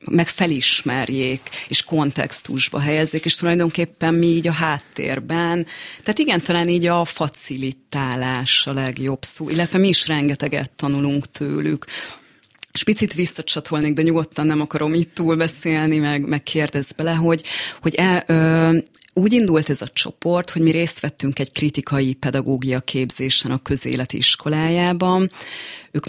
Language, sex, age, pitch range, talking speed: Hungarian, female, 30-49, 135-170 Hz, 135 wpm